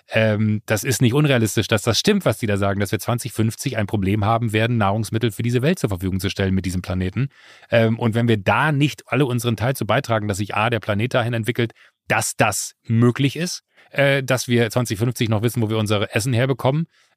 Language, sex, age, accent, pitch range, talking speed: German, male, 30-49, German, 105-120 Hz, 220 wpm